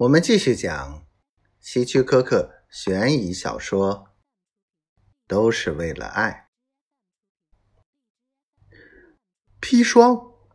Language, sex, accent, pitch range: Chinese, male, native, 95-135 Hz